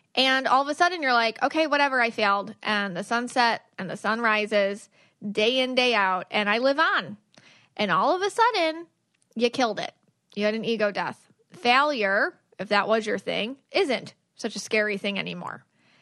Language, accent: English, American